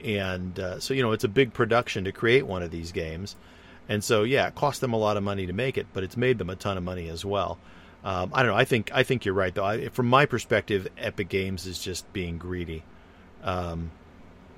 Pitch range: 90-120 Hz